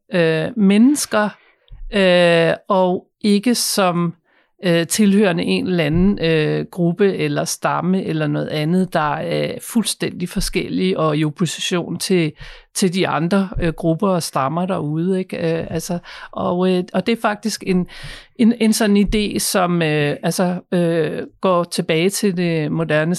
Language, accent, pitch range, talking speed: Danish, native, 165-195 Hz, 115 wpm